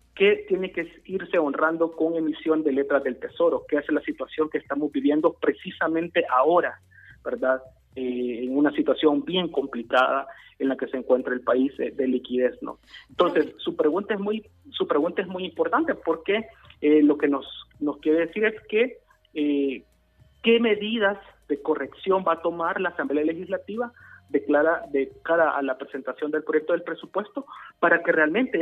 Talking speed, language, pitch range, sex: 170 wpm, Spanish, 145-195 Hz, male